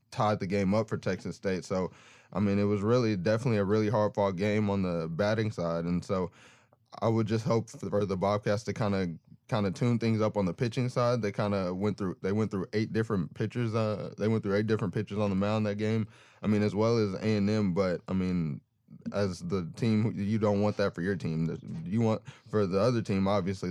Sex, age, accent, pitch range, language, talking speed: male, 20-39, American, 95-105 Hz, English, 240 wpm